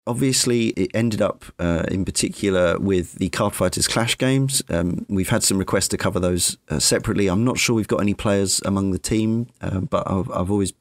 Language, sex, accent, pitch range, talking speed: English, male, British, 95-120 Hz, 210 wpm